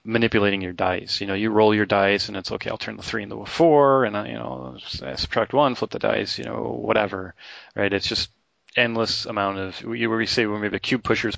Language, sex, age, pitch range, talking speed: English, male, 30-49, 95-110 Hz, 255 wpm